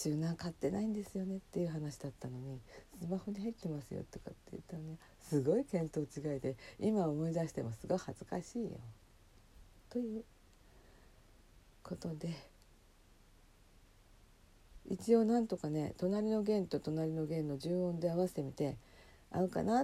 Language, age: Japanese, 50-69